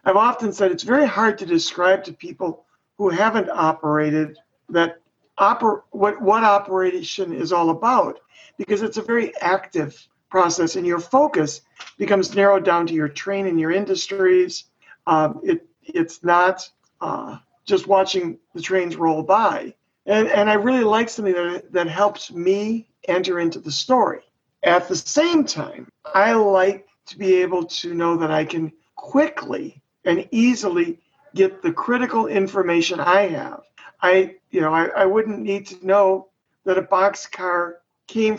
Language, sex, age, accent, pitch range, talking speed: English, male, 50-69, American, 175-215 Hz, 155 wpm